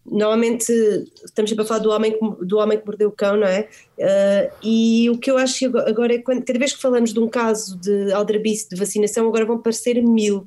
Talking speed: 230 wpm